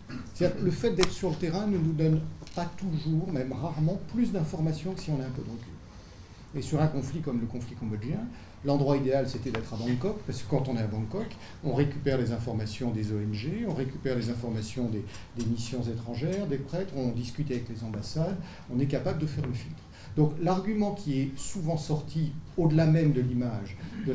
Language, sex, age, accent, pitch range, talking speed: French, male, 40-59, French, 115-150 Hz, 210 wpm